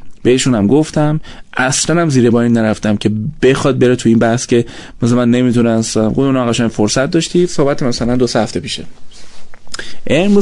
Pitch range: 110-135 Hz